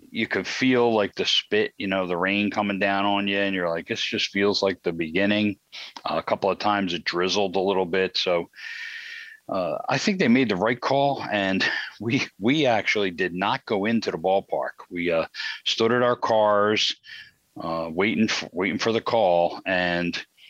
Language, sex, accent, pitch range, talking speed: English, male, American, 90-115 Hz, 195 wpm